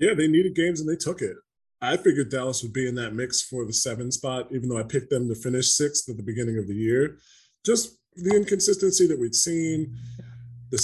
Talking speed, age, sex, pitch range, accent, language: 225 wpm, 20-39, male, 120-155 Hz, American, English